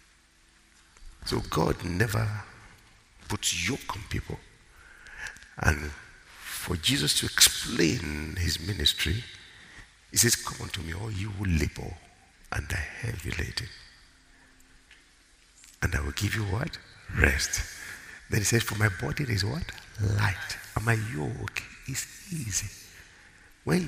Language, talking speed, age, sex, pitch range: English, 130 wpm, 60-79, male, 80-105 Hz